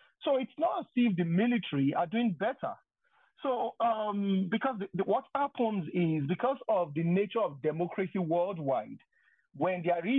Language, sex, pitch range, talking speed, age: English, male, 155-215 Hz, 160 wpm, 40-59